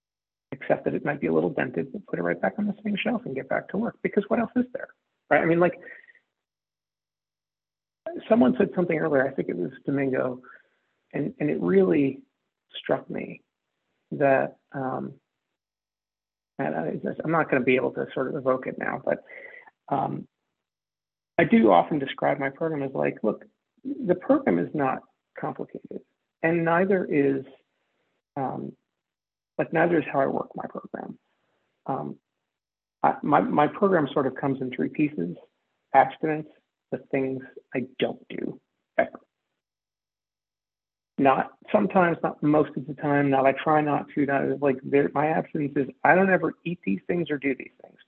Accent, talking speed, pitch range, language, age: American, 170 wpm, 135-190 Hz, English, 50-69